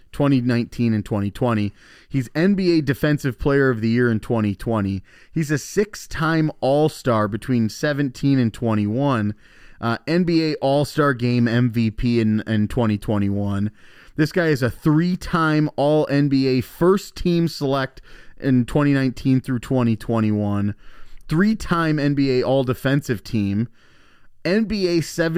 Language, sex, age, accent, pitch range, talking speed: English, male, 30-49, American, 110-155 Hz, 115 wpm